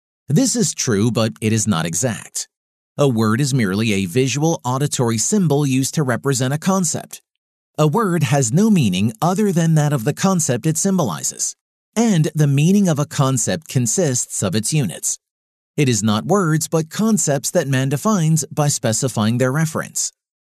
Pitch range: 120-175 Hz